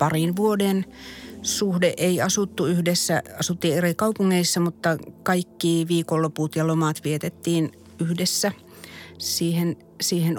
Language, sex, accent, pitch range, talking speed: Finnish, female, native, 155-175 Hz, 105 wpm